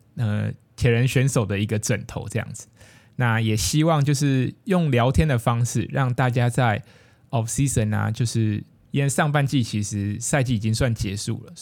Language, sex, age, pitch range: Chinese, male, 20-39, 110-130 Hz